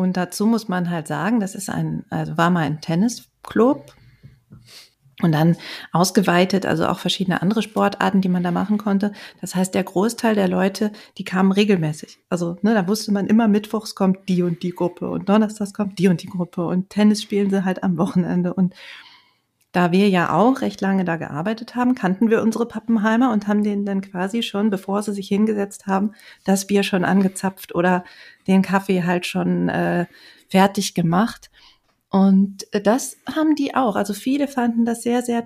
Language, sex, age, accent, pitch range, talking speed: German, female, 40-59, German, 185-220 Hz, 185 wpm